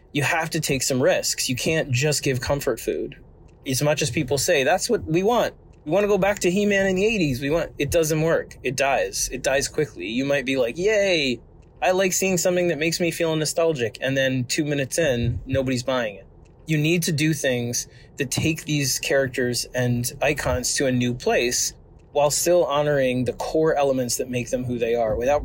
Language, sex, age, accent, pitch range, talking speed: English, male, 20-39, American, 125-155 Hz, 215 wpm